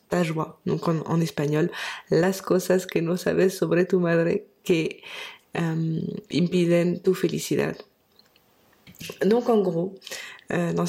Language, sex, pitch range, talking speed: French, female, 175-200 Hz, 130 wpm